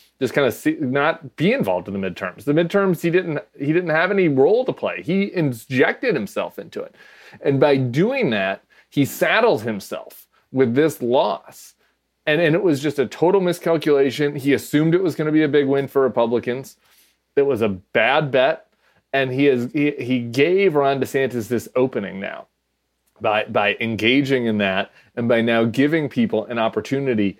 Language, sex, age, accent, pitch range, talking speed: English, male, 30-49, American, 115-155 Hz, 185 wpm